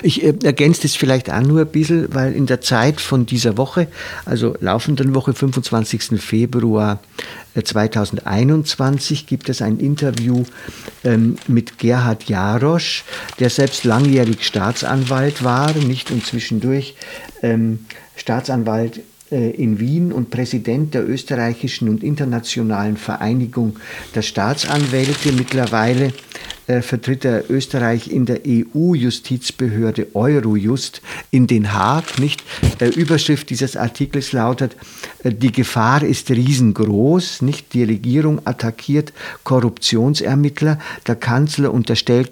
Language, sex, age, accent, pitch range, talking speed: German, male, 50-69, German, 115-140 Hz, 110 wpm